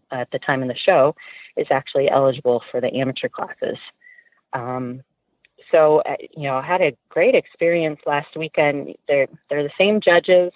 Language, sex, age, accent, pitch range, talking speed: English, female, 30-49, American, 130-170 Hz, 175 wpm